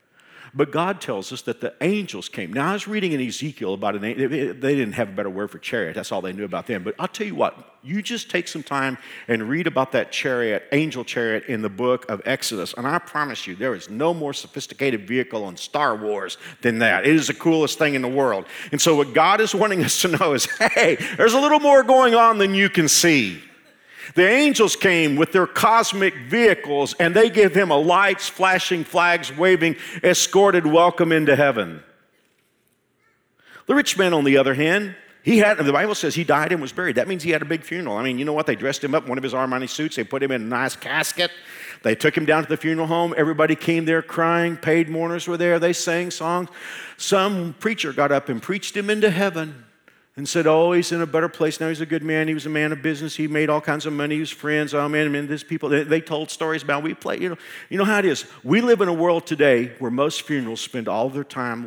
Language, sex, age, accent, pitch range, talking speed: English, male, 50-69, American, 130-175 Hz, 245 wpm